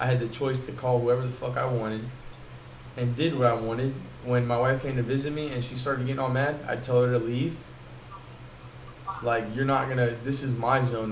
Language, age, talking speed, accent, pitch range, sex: English, 20-39, 225 wpm, American, 120-135 Hz, male